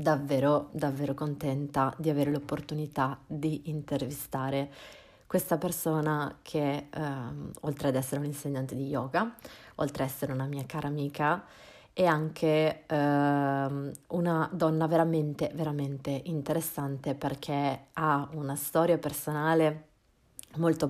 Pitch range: 145-170 Hz